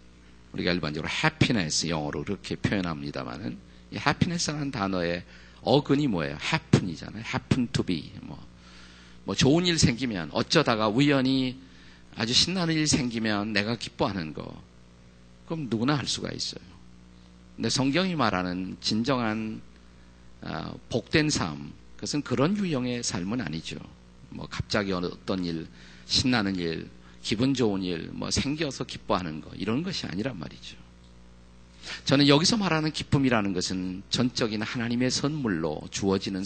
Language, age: Korean, 50-69